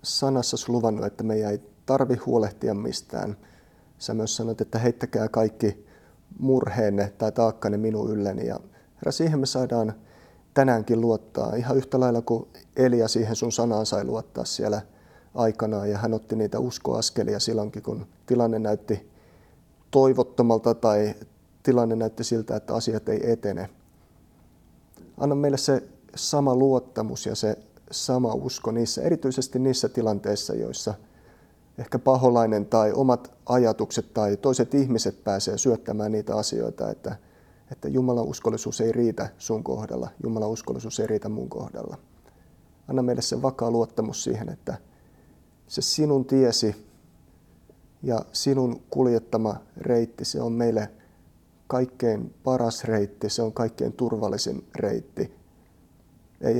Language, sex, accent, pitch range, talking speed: Finnish, male, native, 105-125 Hz, 130 wpm